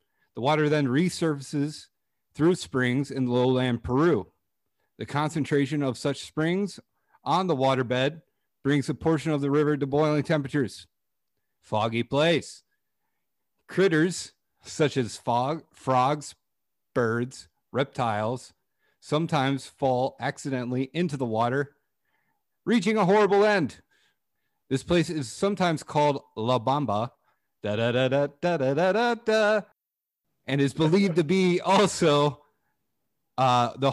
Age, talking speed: 40-59, 105 wpm